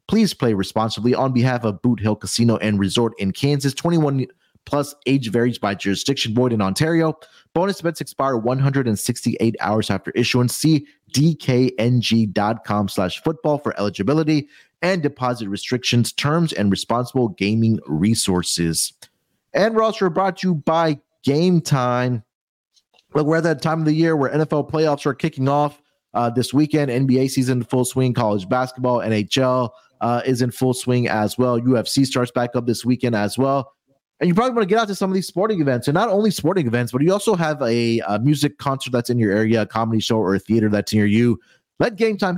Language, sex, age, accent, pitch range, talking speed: English, male, 30-49, American, 110-145 Hz, 185 wpm